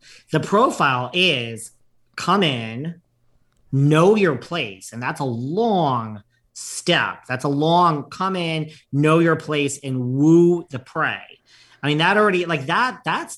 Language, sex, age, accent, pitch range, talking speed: English, male, 40-59, American, 125-160 Hz, 145 wpm